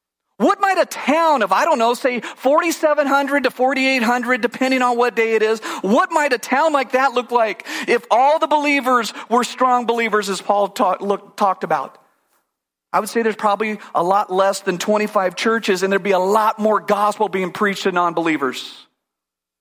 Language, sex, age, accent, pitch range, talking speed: English, male, 50-69, American, 195-255 Hz, 185 wpm